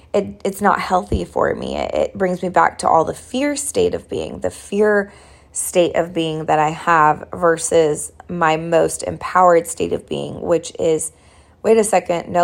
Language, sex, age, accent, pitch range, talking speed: English, female, 20-39, American, 165-205 Hz, 185 wpm